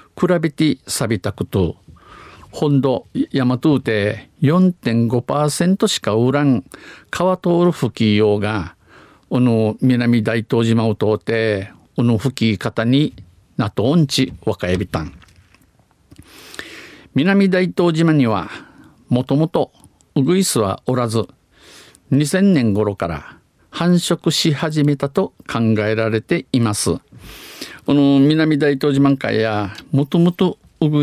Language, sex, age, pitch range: Japanese, male, 50-69, 110-150 Hz